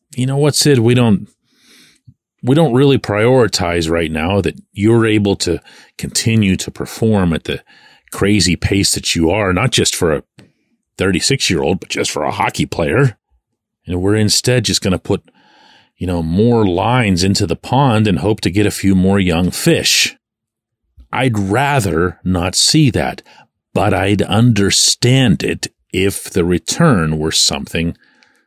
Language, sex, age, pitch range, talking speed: English, male, 40-59, 85-115 Hz, 160 wpm